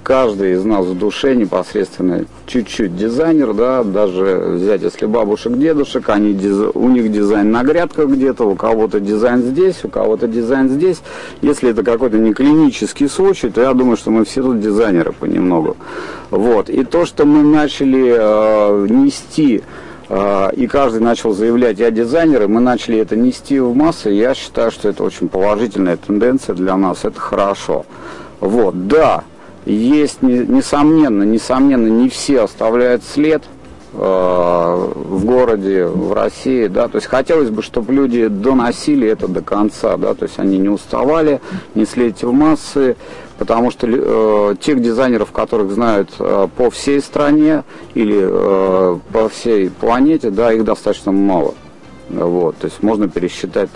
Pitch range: 105-145 Hz